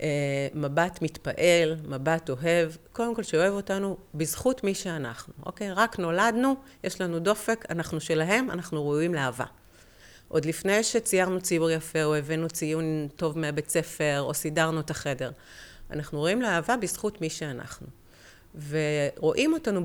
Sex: female